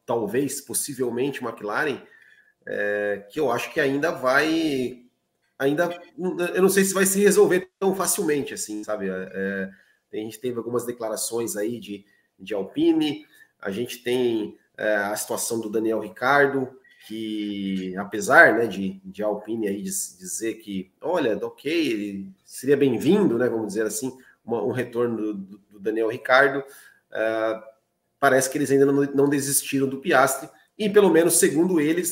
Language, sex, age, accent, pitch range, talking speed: Portuguese, male, 30-49, Brazilian, 100-140 Hz, 140 wpm